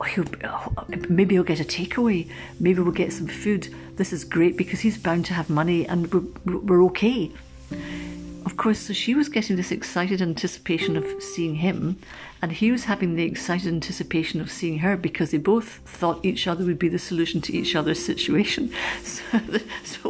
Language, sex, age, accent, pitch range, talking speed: English, female, 50-69, British, 170-205 Hz, 180 wpm